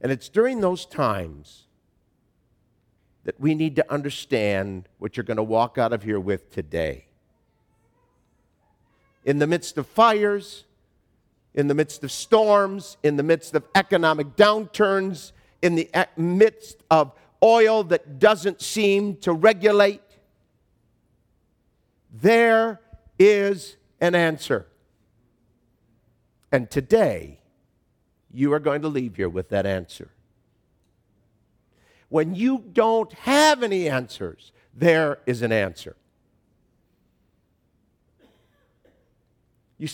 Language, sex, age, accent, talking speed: English, male, 50-69, American, 110 wpm